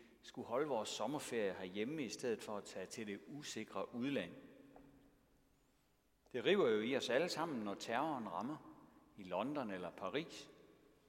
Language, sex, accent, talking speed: Danish, male, native, 155 wpm